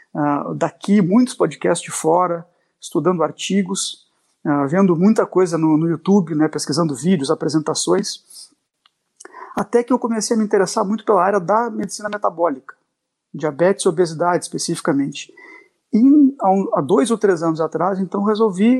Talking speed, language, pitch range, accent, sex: 150 wpm, Portuguese, 165-220 Hz, Brazilian, male